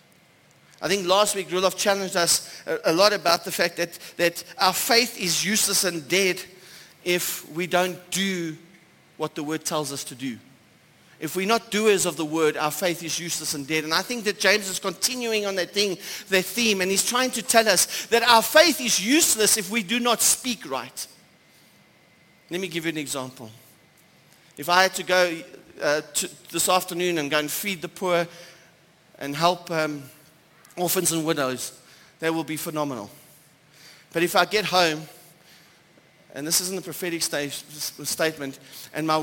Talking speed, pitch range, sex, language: 180 wpm, 155-195 Hz, male, English